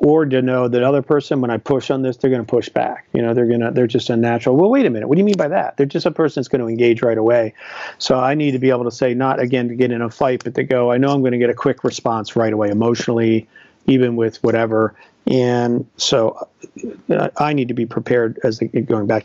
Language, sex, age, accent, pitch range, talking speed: English, male, 50-69, American, 115-130 Hz, 275 wpm